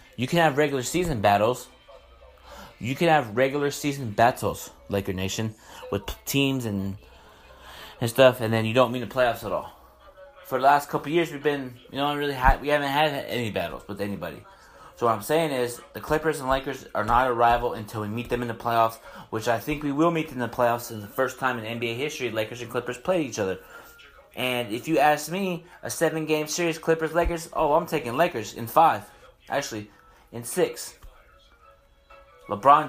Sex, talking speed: male, 205 wpm